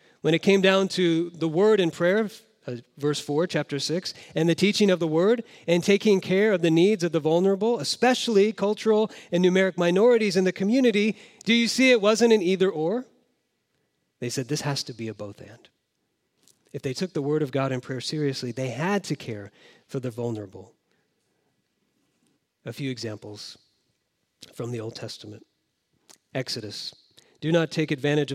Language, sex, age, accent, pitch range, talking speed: English, male, 40-59, American, 130-185 Hz, 175 wpm